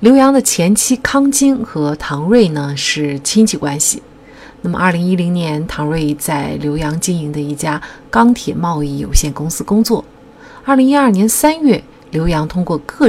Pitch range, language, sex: 150-220 Hz, Chinese, female